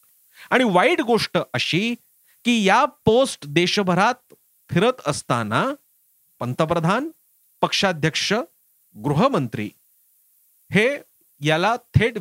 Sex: male